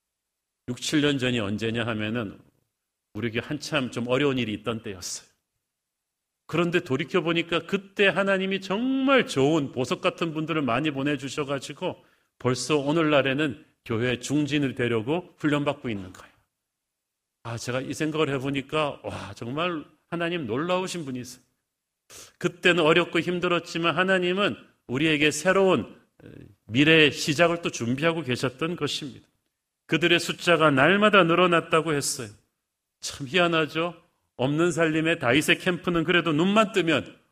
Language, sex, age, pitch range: Korean, male, 40-59, 125-170 Hz